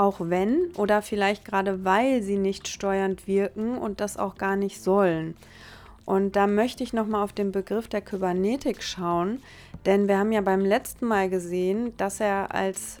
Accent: German